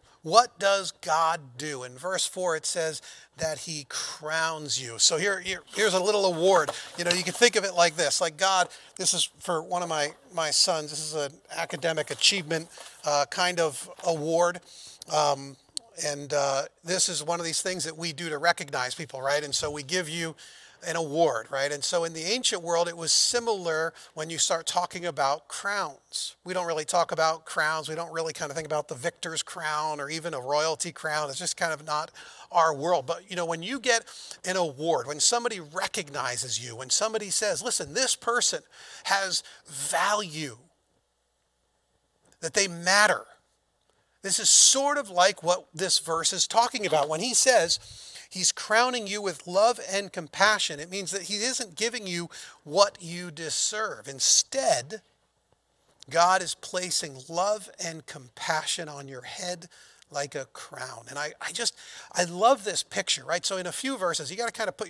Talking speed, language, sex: 185 wpm, English, male